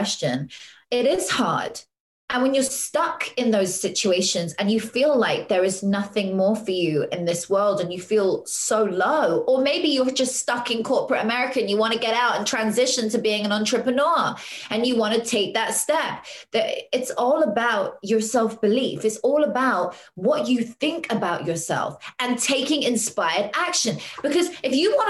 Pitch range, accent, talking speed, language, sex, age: 215-290 Hz, British, 190 wpm, English, female, 20-39